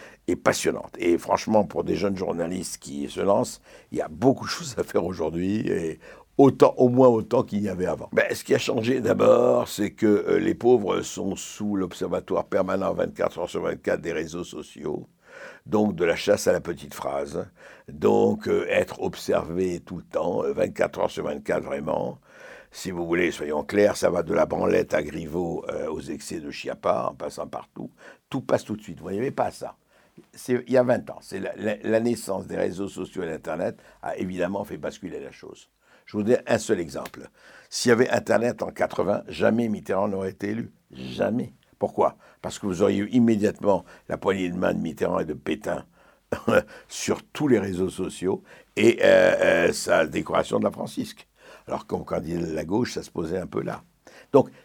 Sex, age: male, 60-79